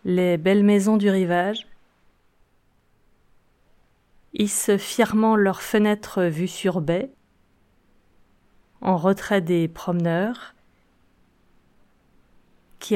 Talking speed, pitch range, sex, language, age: 80 wpm, 165-205 Hz, female, French, 30-49